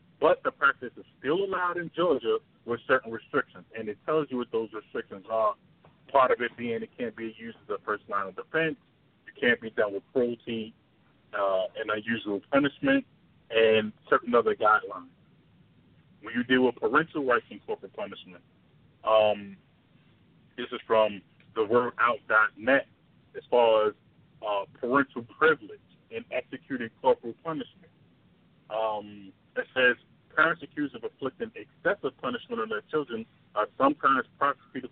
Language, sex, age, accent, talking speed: English, male, 30-49, American, 150 wpm